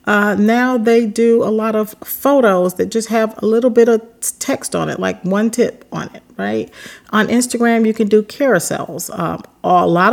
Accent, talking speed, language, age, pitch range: American, 195 wpm, English, 40-59, 175-235 Hz